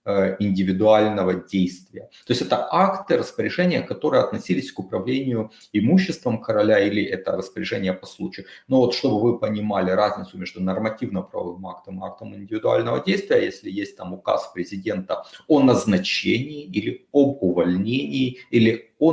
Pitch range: 95-125 Hz